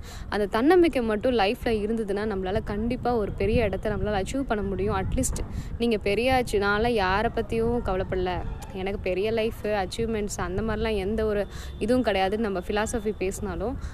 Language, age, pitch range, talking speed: Tamil, 20-39, 195-245 Hz, 140 wpm